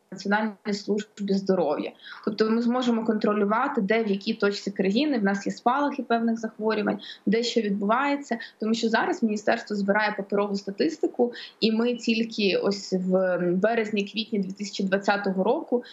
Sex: female